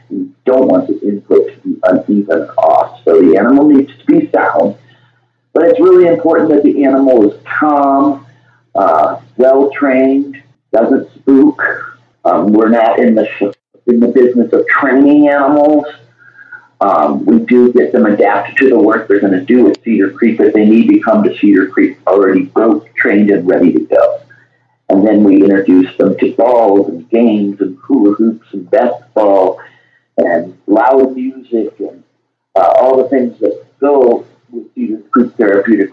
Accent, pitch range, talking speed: American, 120-170 Hz, 165 wpm